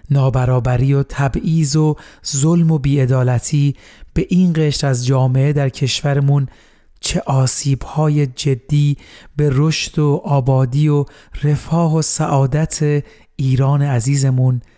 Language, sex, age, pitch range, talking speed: Persian, male, 40-59, 125-150 Hz, 110 wpm